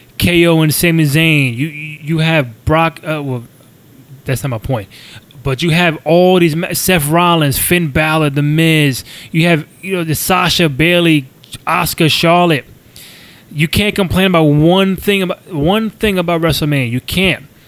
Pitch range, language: 140-175 Hz, English